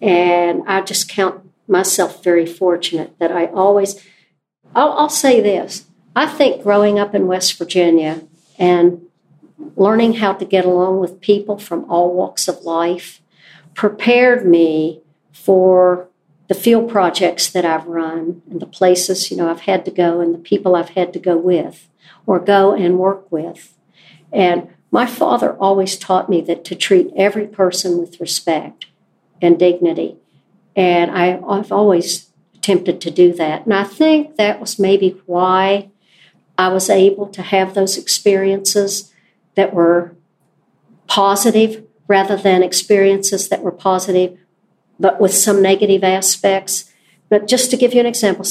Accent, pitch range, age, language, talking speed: American, 175-200 Hz, 50-69, English, 150 wpm